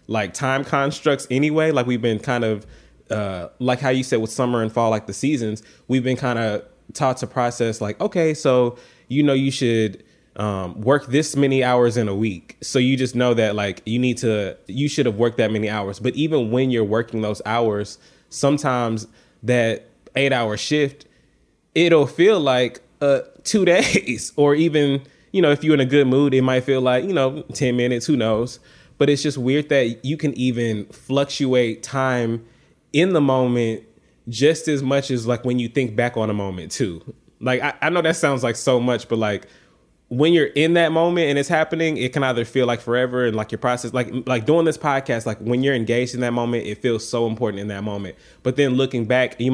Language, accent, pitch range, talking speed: English, American, 115-140 Hz, 215 wpm